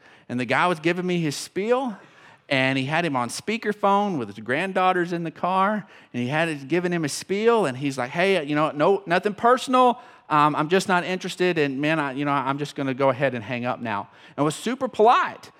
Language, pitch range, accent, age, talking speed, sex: English, 150-225 Hz, American, 40-59, 235 wpm, male